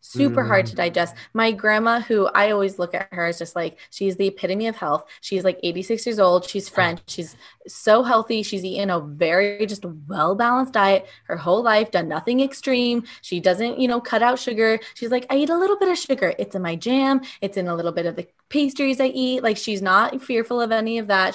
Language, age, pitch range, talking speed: English, 20-39, 190-245 Hz, 230 wpm